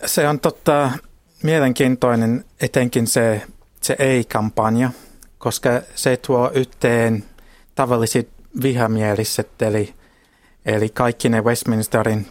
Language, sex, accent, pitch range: Finnish, male, native, 105-125 Hz